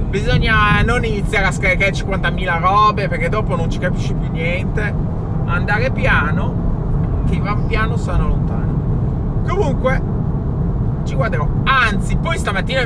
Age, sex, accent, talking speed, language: 20-39, male, native, 125 wpm, Italian